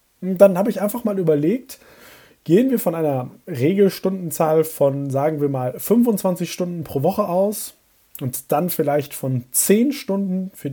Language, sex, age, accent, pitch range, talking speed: German, male, 30-49, German, 145-200 Hz, 150 wpm